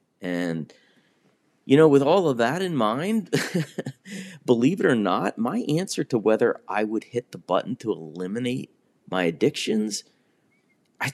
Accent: American